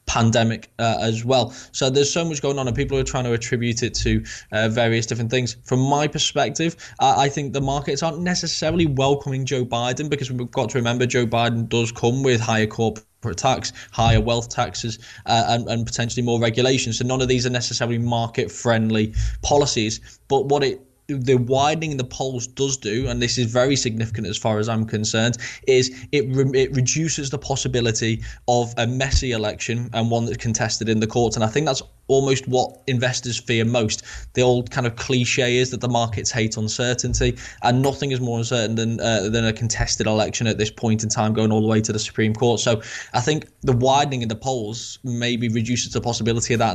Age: 10-29